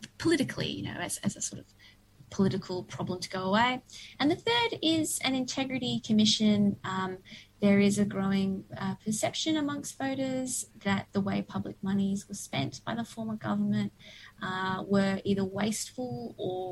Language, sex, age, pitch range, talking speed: English, female, 20-39, 180-210 Hz, 160 wpm